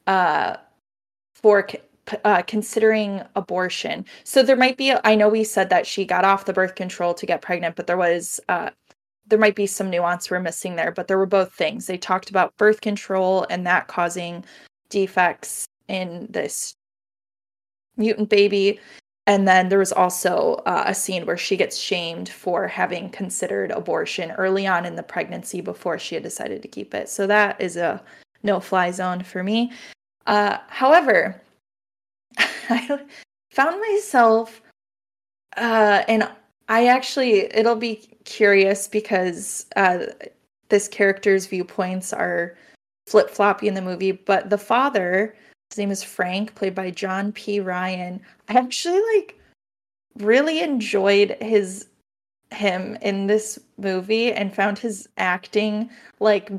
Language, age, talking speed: English, 20-39, 145 wpm